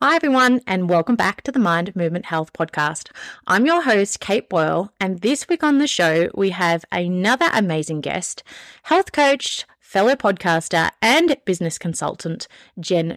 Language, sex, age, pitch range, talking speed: English, female, 30-49, 175-240 Hz, 160 wpm